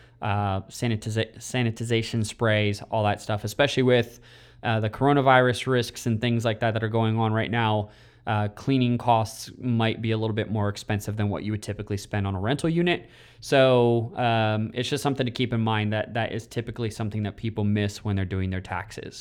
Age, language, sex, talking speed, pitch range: 20-39, English, male, 200 wpm, 110-130 Hz